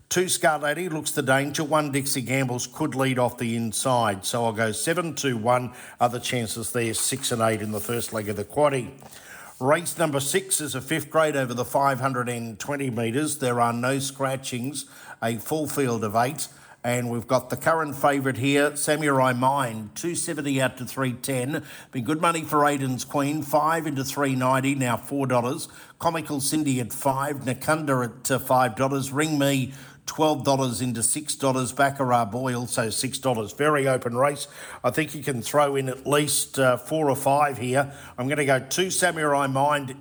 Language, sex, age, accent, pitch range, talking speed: English, male, 50-69, Australian, 125-145 Hz, 180 wpm